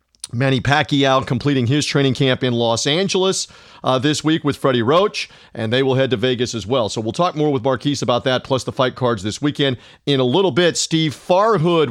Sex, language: male, English